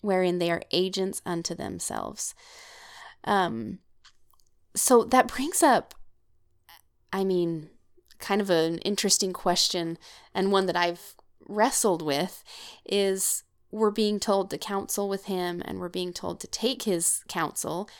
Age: 20-39